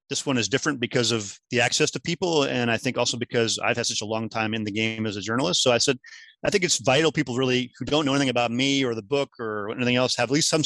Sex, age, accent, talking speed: male, 30-49, American, 295 wpm